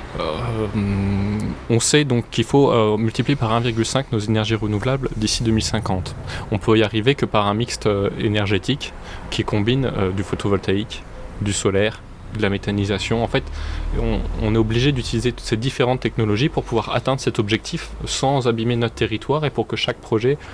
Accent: French